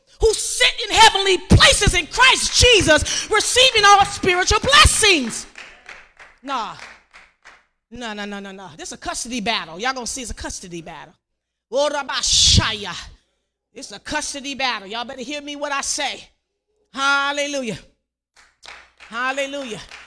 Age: 30-49